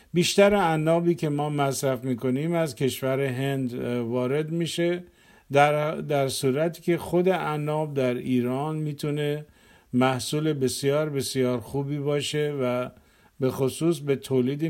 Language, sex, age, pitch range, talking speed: Persian, male, 50-69, 125-155 Hz, 125 wpm